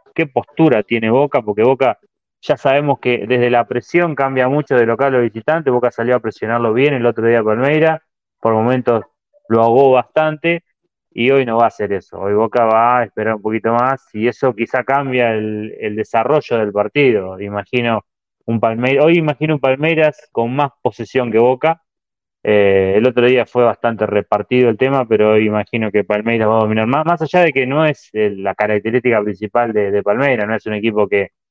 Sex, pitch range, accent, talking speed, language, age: male, 110-145 Hz, Argentinian, 200 wpm, Spanish, 20-39